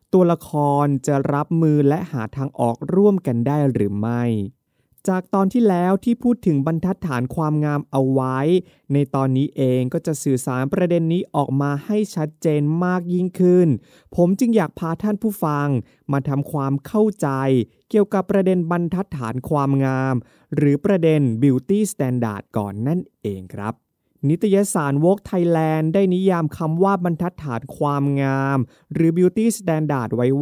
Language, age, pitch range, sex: Thai, 20-39, 135-175 Hz, male